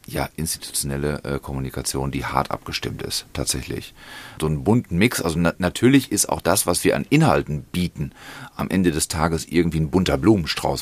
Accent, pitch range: German, 70-85 Hz